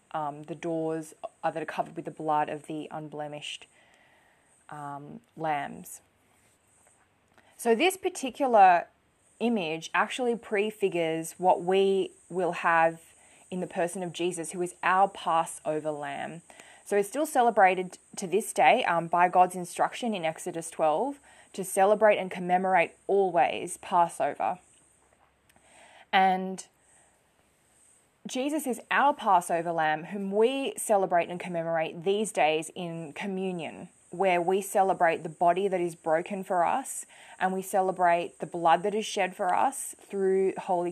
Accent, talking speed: Australian, 135 wpm